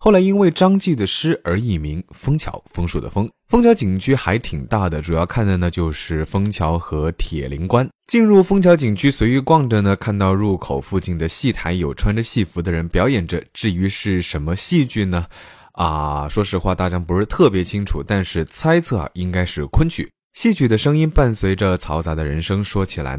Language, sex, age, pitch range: Chinese, male, 20-39, 85-130 Hz